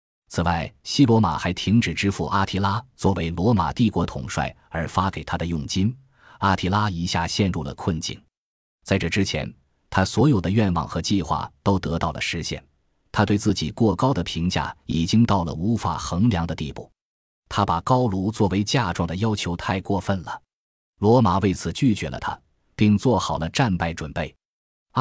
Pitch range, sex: 85-110 Hz, male